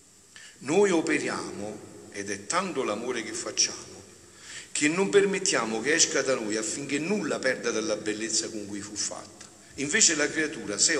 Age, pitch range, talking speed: 50-69, 110-165 Hz, 155 wpm